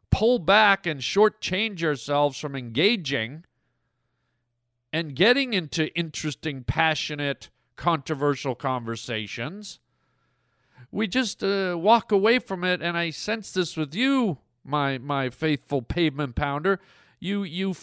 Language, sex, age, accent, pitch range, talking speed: English, male, 50-69, American, 135-190 Hz, 115 wpm